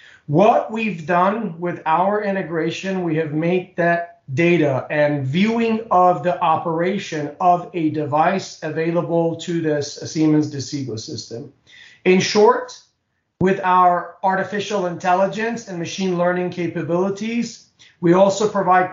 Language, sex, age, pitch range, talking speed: English, male, 40-59, 160-195 Hz, 120 wpm